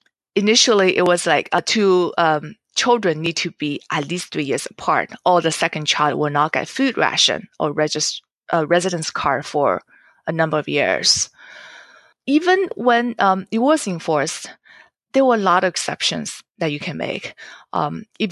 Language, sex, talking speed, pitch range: English, female, 165 wpm, 155-205 Hz